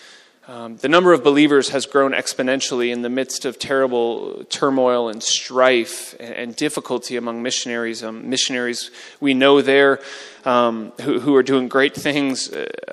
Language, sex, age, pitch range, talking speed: English, male, 30-49, 120-140 Hz, 155 wpm